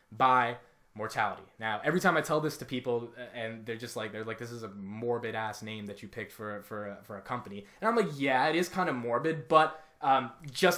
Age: 20-39